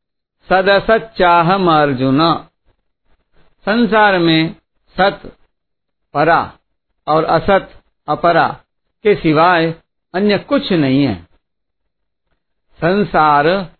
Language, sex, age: Hindi, male, 50-69